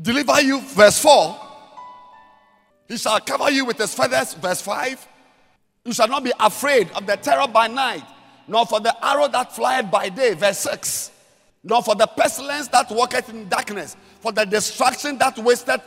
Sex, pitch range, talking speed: male, 190-270 Hz, 175 wpm